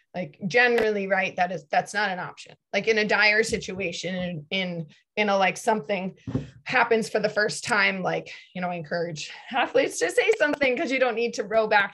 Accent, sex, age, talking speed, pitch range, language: American, female, 20-39, 195 wpm, 170-210 Hz, English